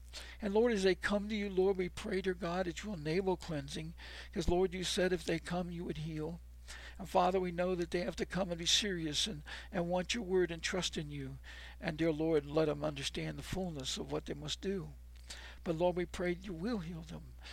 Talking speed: 235 wpm